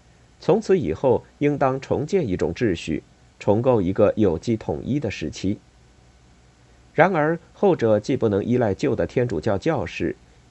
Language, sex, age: Chinese, male, 50-69